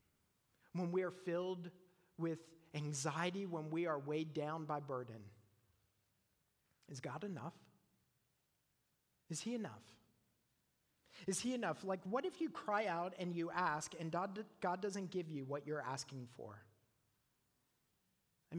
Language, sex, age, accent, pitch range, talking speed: English, male, 40-59, American, 140-185 Hz, 130 wpm